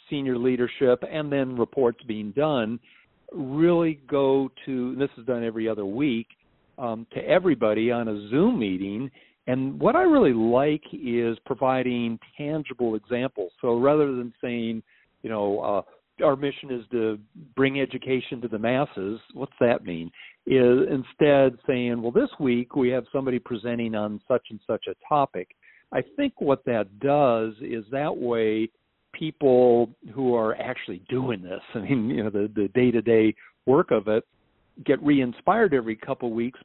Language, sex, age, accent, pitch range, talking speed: English, male, 50-69, American, 115-140 Hz, 165 wpm